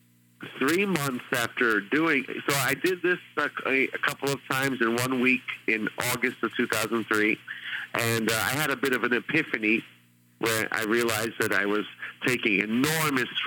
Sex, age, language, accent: male, 50-69, English, American